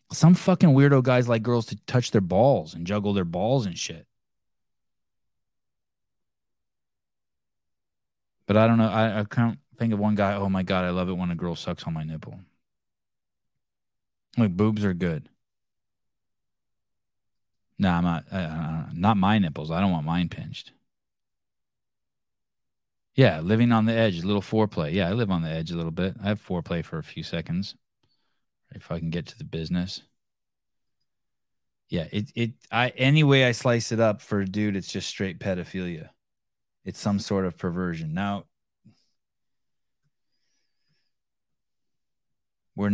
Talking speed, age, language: 150 wpm, 20-39, English